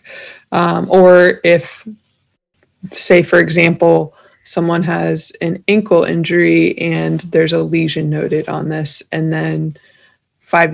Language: English